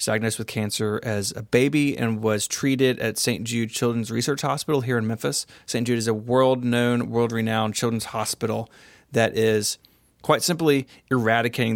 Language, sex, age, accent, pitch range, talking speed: English, male, 30-49, American, 110-125 Hz, 160 wpm